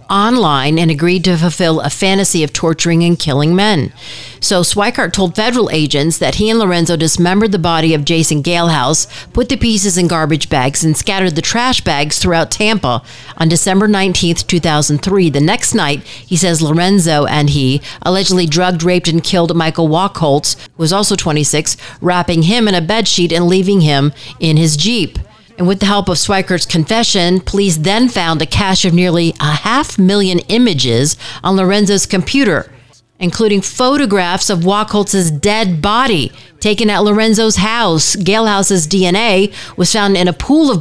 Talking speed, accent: 170 wpm, American